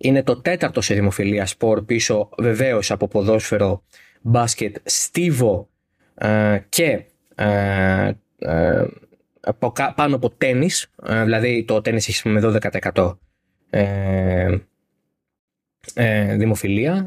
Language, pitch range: Greek, 100-125 Hz